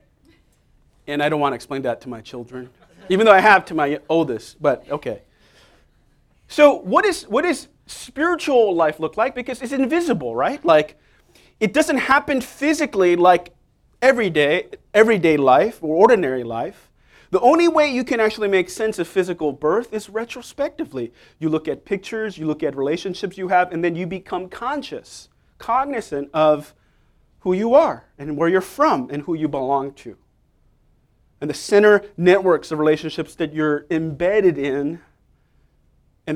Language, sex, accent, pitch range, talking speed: English, male, American, 145-225 Hz, 160 wpm